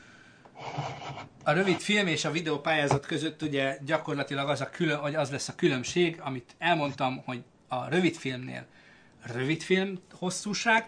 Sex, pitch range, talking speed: male, 125-155 Hz, 145 wpm